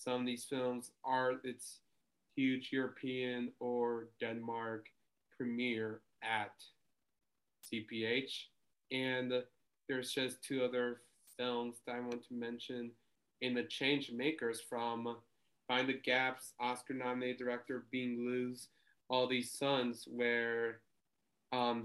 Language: English